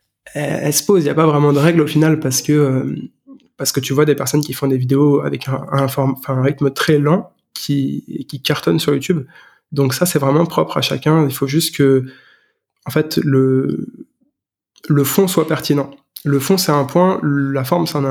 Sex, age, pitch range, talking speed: male, 20-39, 140-160 Hz, 215 wpm